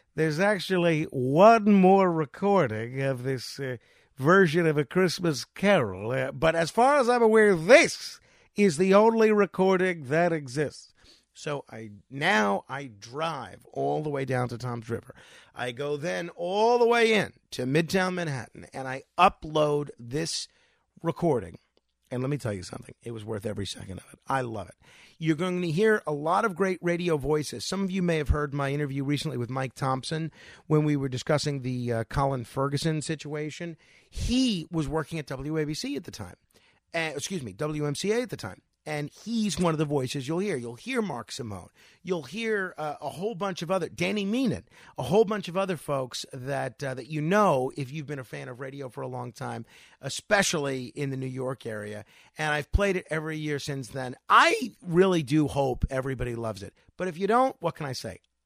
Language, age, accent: English, 50-69, American